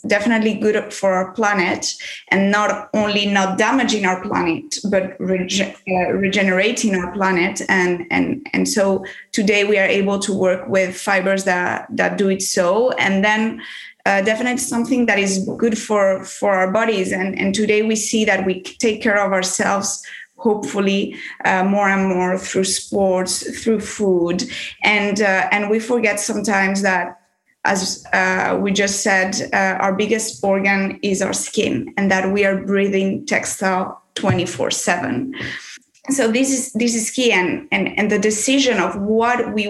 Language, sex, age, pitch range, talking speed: English, female, 20-39, 190-220 Hz, 160 wpm